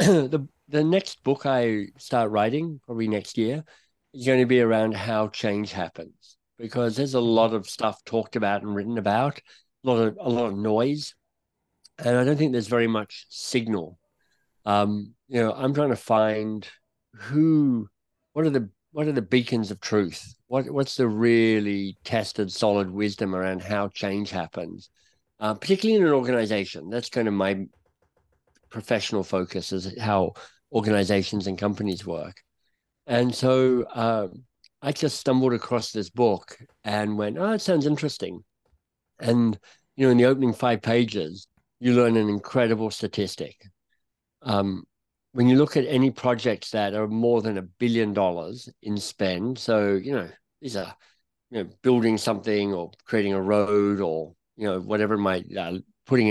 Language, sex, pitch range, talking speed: English, male, 100-125 Hz, 165 wpm